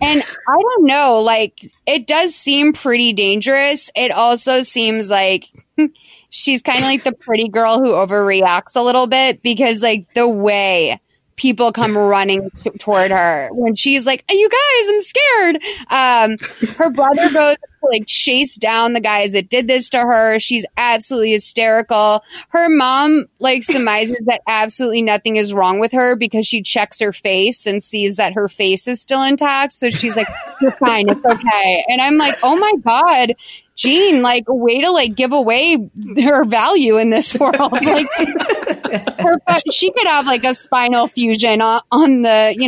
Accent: American